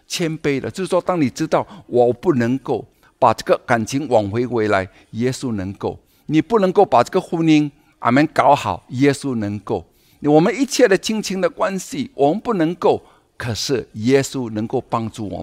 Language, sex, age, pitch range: Chinese, male, 60-79, 115-175 Hz